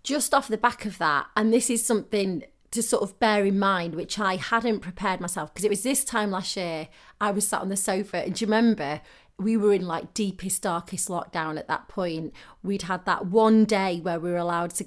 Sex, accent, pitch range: female, British, 175-215 Hz